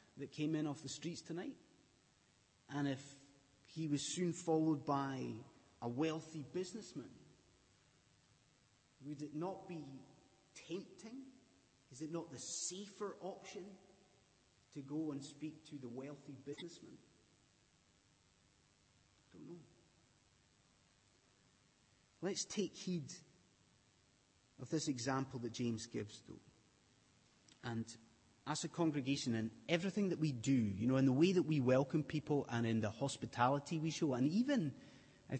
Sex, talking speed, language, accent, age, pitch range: male, 130 wpm, English, British, 30-49, 125-175 Hz